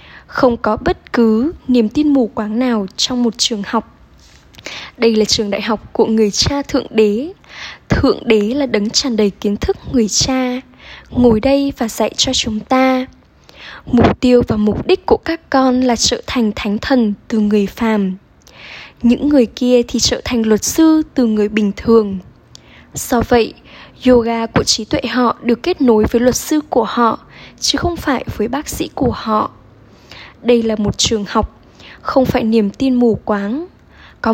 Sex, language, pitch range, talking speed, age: female, Vietnamese, 220-270 Hz, 180 wpm, 10-29